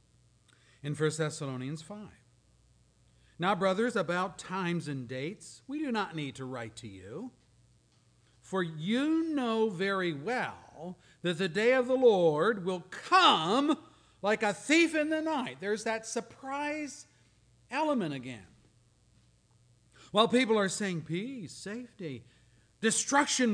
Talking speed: 125 wpm